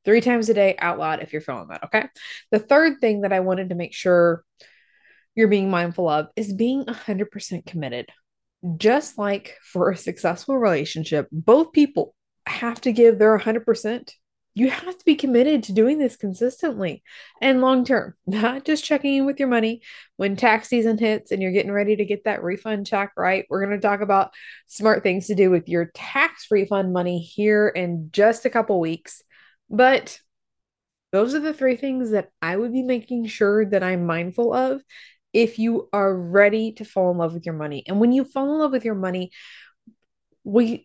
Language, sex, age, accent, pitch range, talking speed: English, female, 20-39, American, 185-240 Hz, 190 wpm